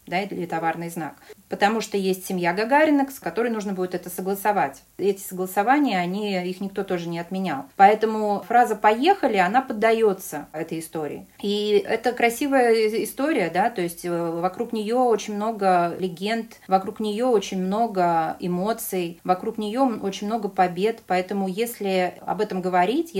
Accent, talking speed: native, 155 wpm